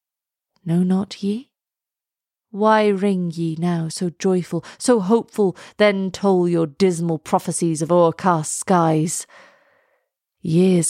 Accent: British